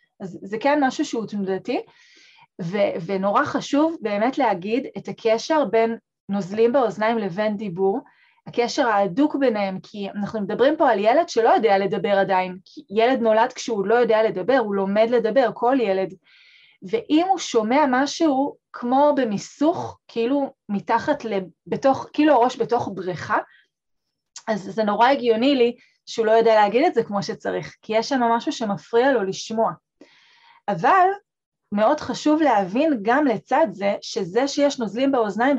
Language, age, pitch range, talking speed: Hebrew, 20-39, 210-260 Hz, 145 wpm